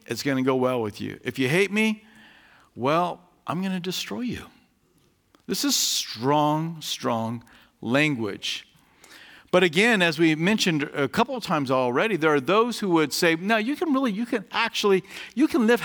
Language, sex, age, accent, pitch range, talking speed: English, male, 50-69, American, 130-195 Hz, 180 wpm